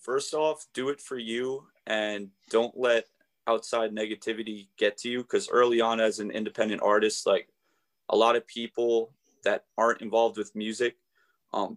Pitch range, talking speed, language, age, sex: 105-120 Hz, 165 wpm, English, 20-39, male